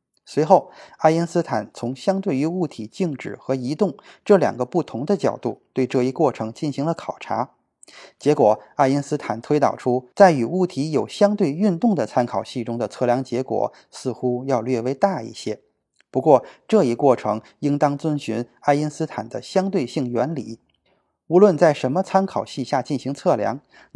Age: 20-39